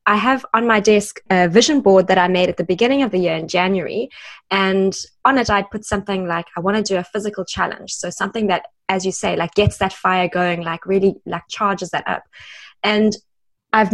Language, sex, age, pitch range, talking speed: English, female, 20-39, 185-215 Hz, 225 wpm